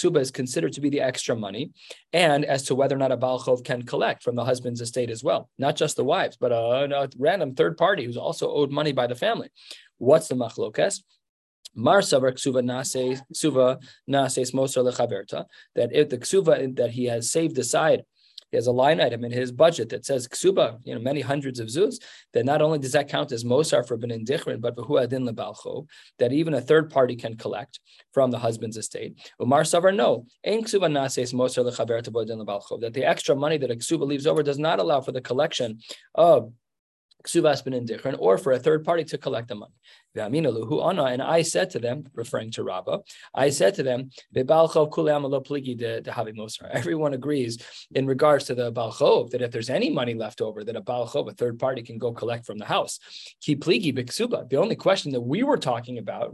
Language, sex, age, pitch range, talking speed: English, male, 20-39, 120-150 Hz, 180 wpm